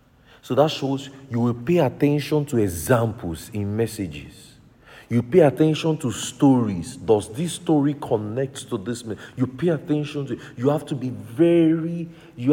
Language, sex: English, male